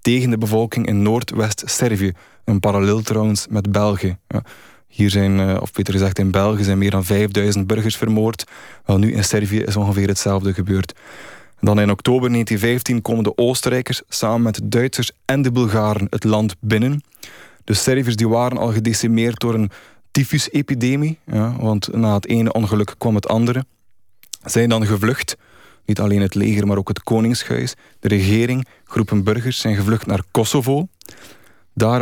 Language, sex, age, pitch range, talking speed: Dutch, male, 20-39, 100-115 Hz, 165 wpm